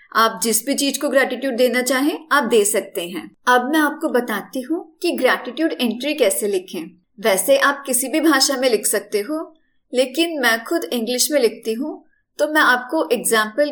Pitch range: 230-310 Hz